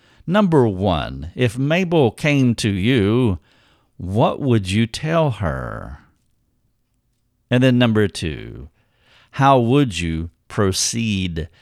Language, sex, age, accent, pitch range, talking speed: English, male, 50-69, American, 90-125 Hz, 105 wpm